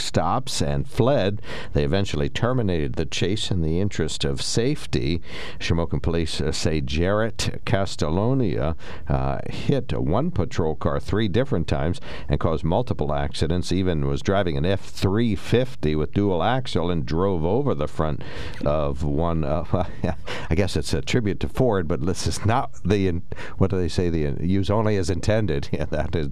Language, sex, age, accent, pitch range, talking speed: English, male, 60-79, American, 75-95 Hz, 175 wpm